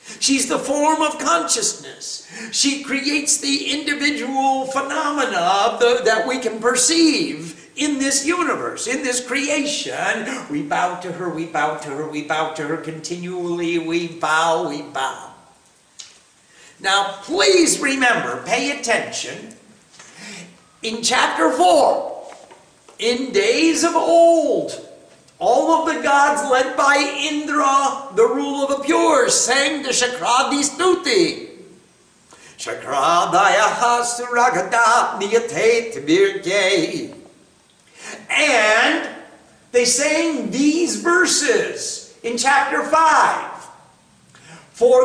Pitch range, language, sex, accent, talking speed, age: 235-320 Hz, English, male, American, 105 wpm, 50-69